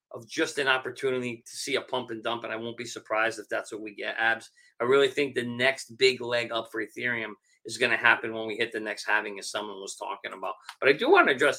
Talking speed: 270 wpm